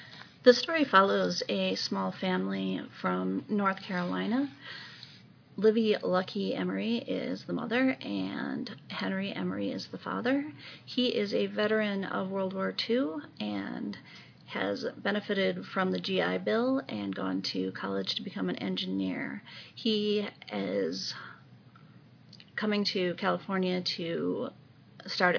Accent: American